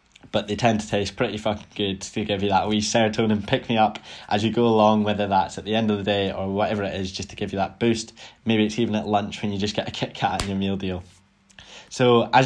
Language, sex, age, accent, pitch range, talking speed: English, male, 10-29, British, 100-115 Hz, 265 wpm